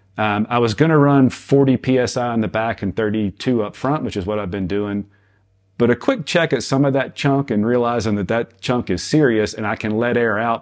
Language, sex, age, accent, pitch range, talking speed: English, male, 40-59, American, 100-120 Hz, 245 wpm